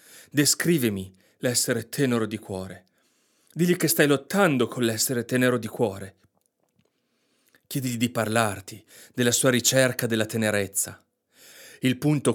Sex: male